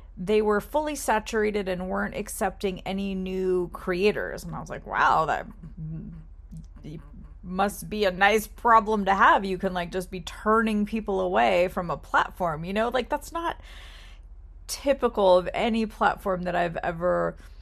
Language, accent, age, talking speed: English, American, 30-49, 155 wpm